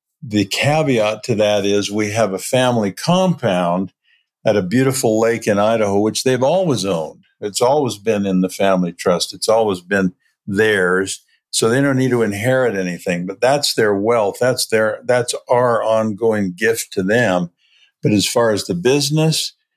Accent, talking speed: American, 170 wpm